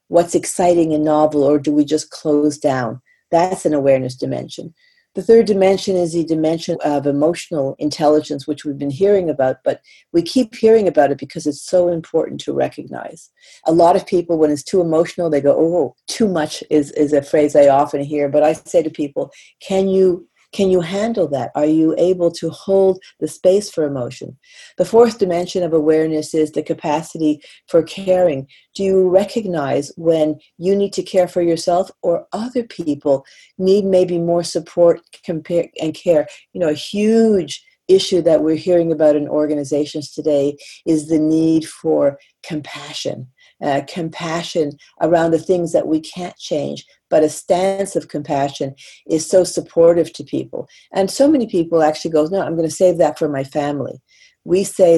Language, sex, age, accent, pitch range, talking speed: English, female, 50-69, American, 150-185 Hz, 175 wpm